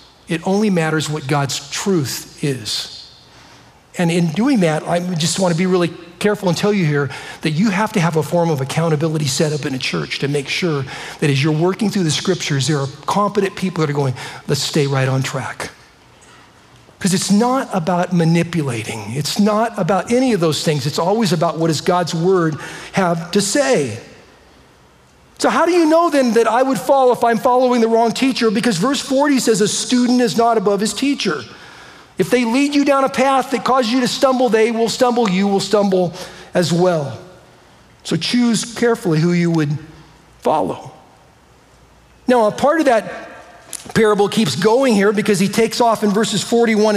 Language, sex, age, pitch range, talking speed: English, male, 50-69, 165-235 Hz, 190 wpm